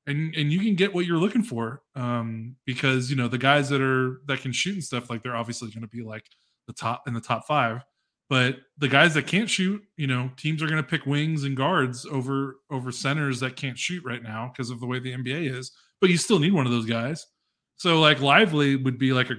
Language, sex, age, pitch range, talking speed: English, male, 20-39, 120-140 Hz, 250 wpm